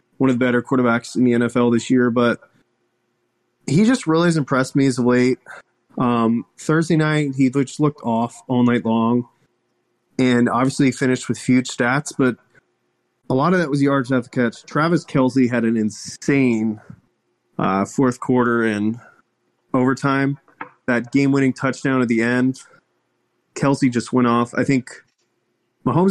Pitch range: 120-140 Hz